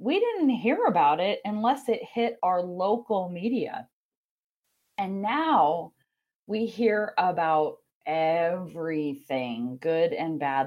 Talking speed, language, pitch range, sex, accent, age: 110 wpm, English, 160-225 Hz, female, American, 30-49